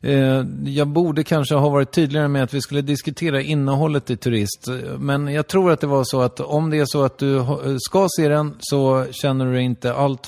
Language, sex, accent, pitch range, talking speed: English, male, Swedish, 115-145 Hz, 210 wpm